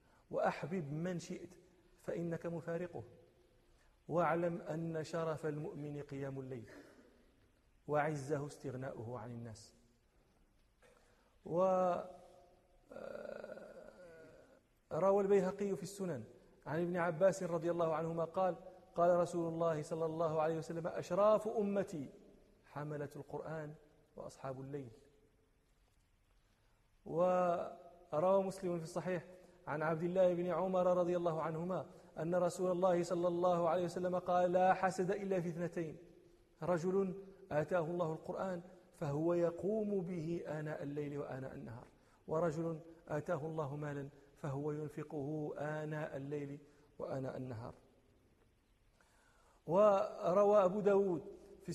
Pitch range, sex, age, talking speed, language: 150-180 Hz, male, 40-59, 105 wpm, Arabic